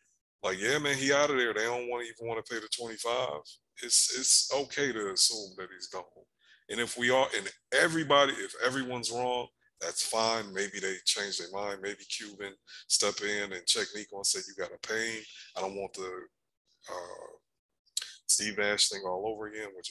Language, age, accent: English, 20-39, American